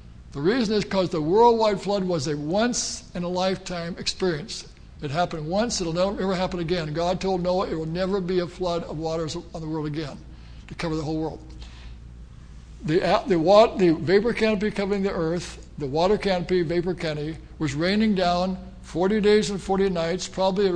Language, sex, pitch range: English, male, 165-200 Hz